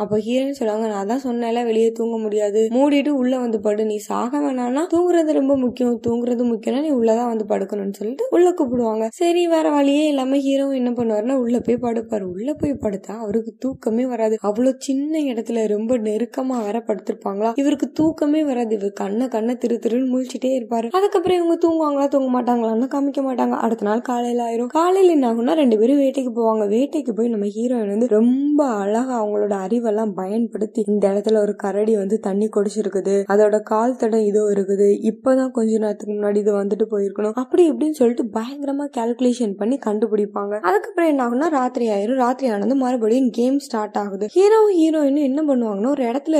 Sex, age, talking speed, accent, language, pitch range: female, 20-39, 125 wpm, native, Tamil, 220-275 Hz